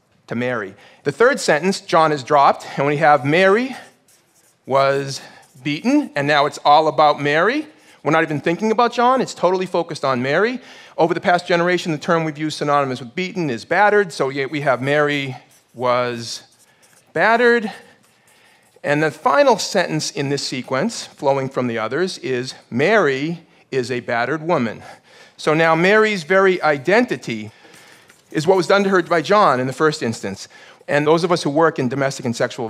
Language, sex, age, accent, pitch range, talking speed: English, male, 40-59, American, 130-175 Hz, 175 wpm